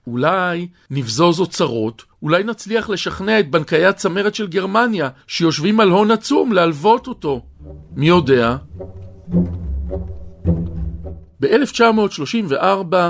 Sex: male